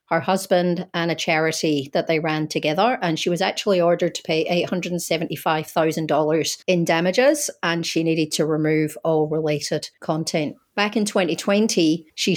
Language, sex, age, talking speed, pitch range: English, female, 40-59, 150 wpm, 160-185 Hz